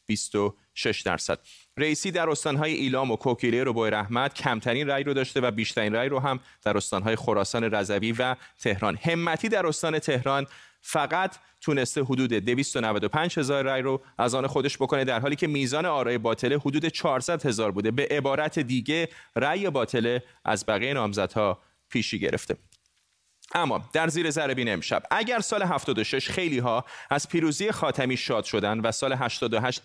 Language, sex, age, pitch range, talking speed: Persian, male, 30-49, 115-140 Hz, 160 wpm